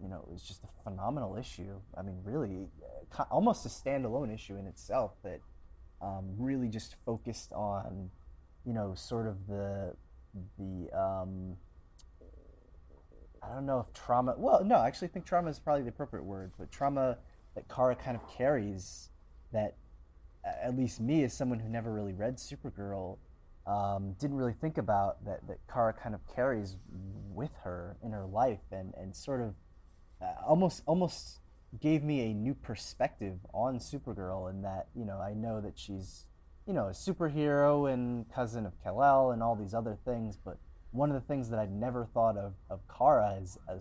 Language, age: English, 20-39